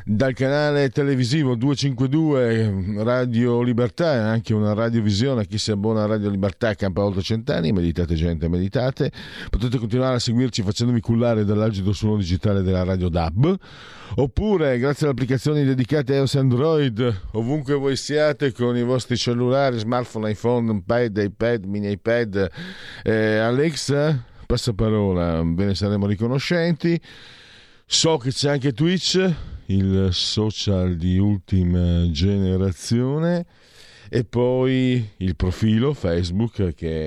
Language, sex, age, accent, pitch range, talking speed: Italian, male, 50-69, native, 95-125 Hz, 135 wpm